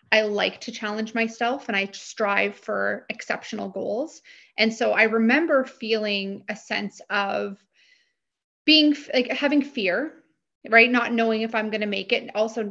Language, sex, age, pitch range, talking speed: English, female, 30-49, 210-245 Hz, 155 wpm